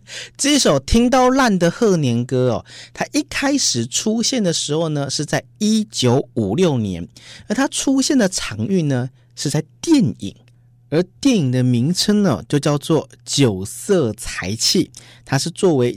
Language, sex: Chinese, male